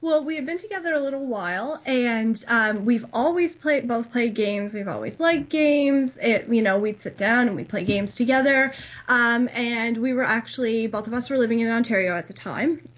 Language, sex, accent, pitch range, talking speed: English, female, American, 200-245 Hz, 215 wpm